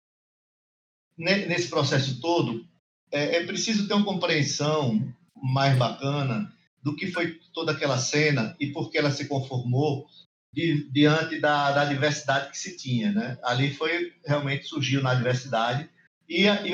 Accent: Brazilian